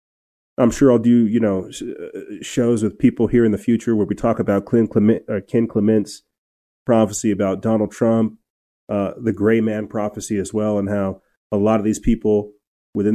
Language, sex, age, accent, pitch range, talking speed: English, male, 30-49, American, 100-115 Hz, 185 wpm